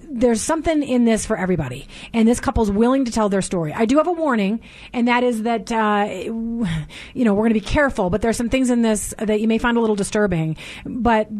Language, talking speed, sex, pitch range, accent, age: English, 235 wpm, female, 195-240 Hz, American, 30-49